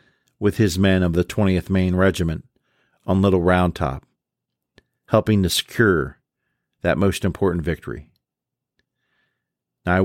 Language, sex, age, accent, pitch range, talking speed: English, male, 50-69, American, 85-95 Hz, 125 wpm